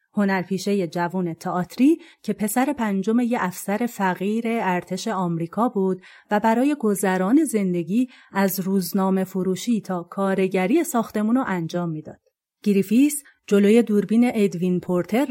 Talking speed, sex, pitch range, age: 115 wpm, female, 180-250 Hz, 30-49